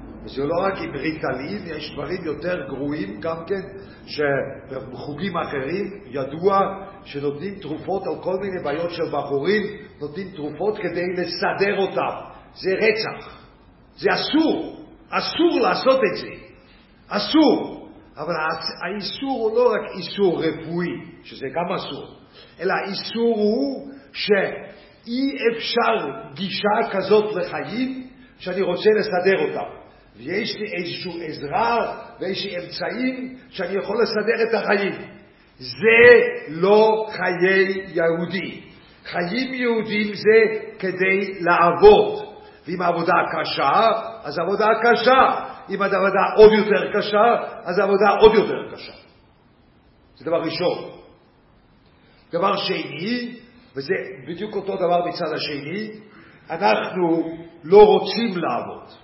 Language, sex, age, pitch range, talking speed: English, male, 50-69, 170-220 Hz, 110 wpm